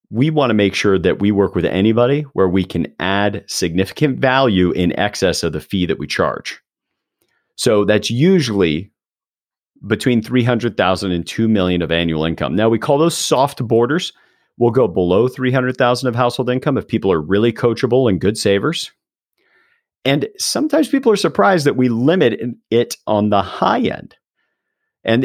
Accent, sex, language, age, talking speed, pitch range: American, male, English, 40-59, 165 wpm, 95-130 Hz